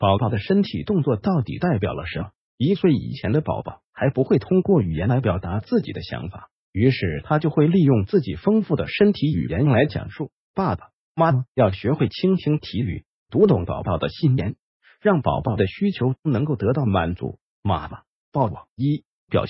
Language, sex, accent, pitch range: Chinese, male, native, 110-170 Hz